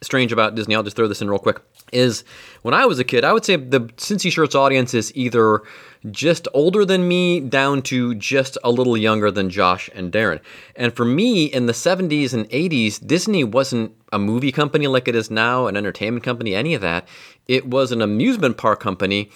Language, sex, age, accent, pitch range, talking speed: English, male, 30-49, American, 105-140 Hz, 210 wpm